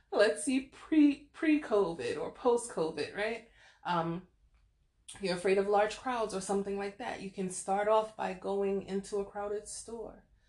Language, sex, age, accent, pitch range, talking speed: English, female, 30-49, American, 180-220 Hz, 165 wpm